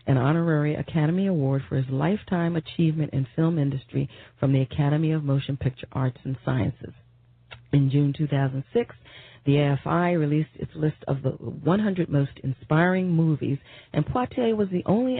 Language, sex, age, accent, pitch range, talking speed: English, female, 40-59, American, 130-160 Hz, 155 wpm